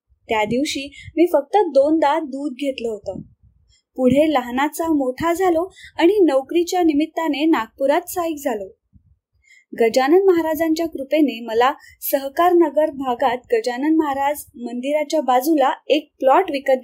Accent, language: native, Marathi